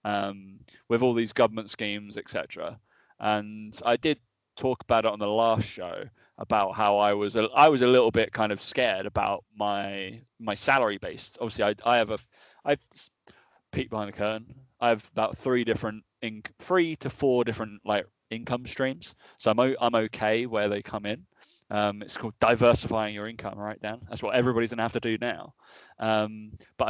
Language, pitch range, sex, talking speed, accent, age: English, 105-125 Hz, male, 180 wpm, British, 20-39